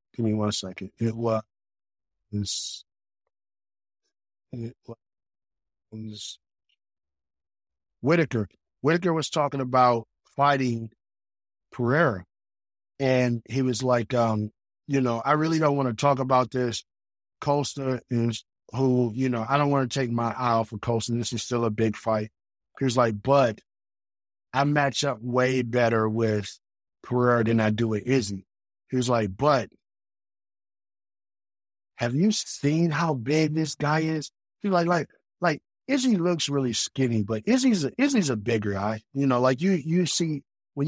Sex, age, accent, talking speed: male, 50-69, American, 145 wpm